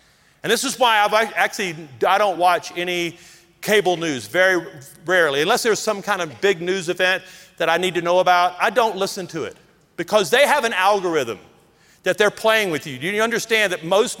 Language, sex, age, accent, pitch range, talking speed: English, male, 40-59, American, 180-265 Hz, 205 wpm